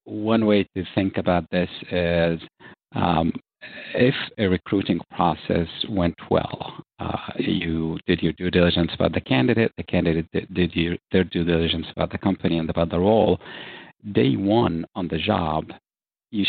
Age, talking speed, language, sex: 50-69, 155 wpm, English, male